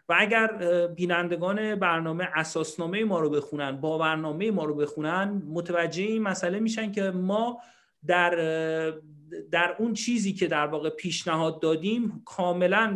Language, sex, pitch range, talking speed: Persian, male, 155-195 Hz, 135 wpm